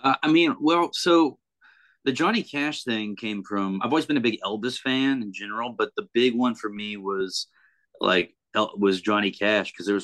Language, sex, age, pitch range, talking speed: English, male, 30-49, 95-115 Hz, 205 wpm